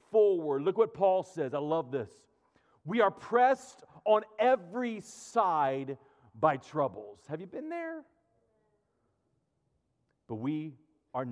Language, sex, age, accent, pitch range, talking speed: English, male, 40-59, American, 175-245 Hz, 115 wpm